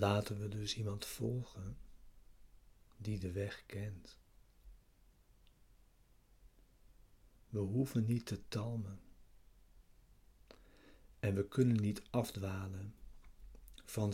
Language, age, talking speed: Dutch, 60-79, 85 wpm